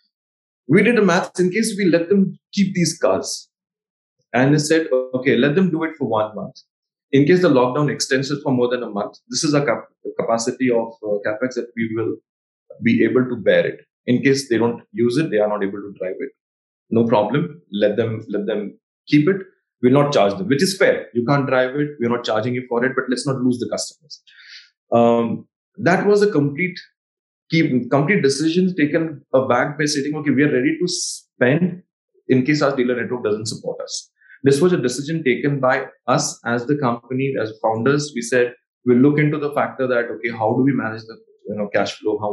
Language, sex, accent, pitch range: English, male, Indian, 125-175 Hz